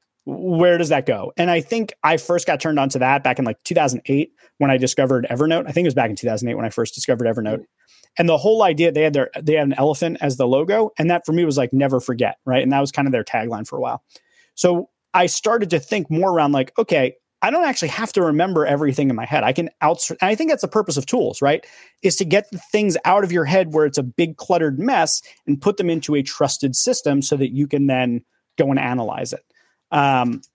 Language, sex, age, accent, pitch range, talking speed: English, male, 30-49, American, 135-175 Hz, 255 wpm